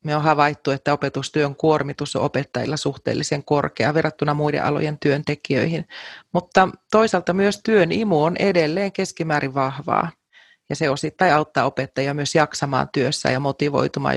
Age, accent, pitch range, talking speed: 30-49, native, 140-170 Hz, 140 wpm